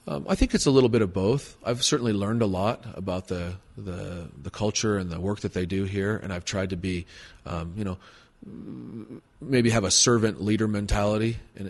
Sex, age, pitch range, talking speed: male, 30-49, 95-120 Hz, 210 wpm